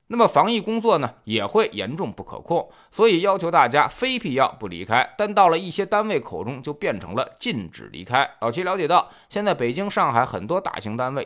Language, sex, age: Chinese, male, 20-39